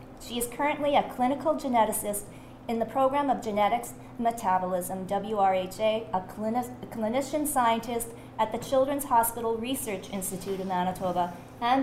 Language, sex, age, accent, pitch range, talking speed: English, female, 40-59, American, 195-245 Hz, 130 wpm